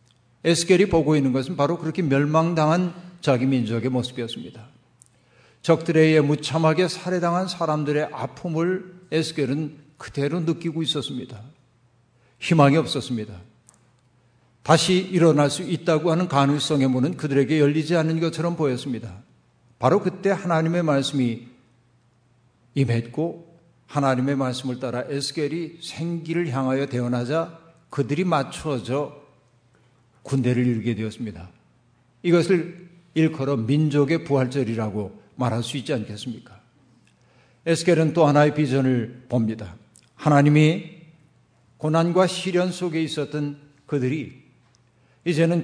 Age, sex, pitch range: 50-69, male, 125-165 Hz